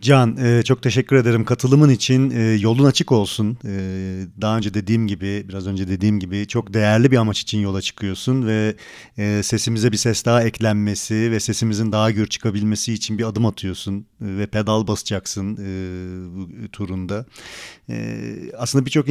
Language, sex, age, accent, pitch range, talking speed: Turkish, male, 40-59, native, 105-120 Hz, 145 wpm